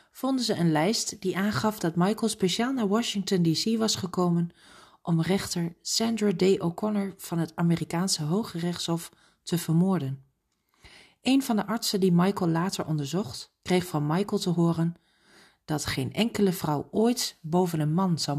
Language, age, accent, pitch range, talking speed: Dutch, 40-59, Dutch, 165-210 Hz, 155 wpm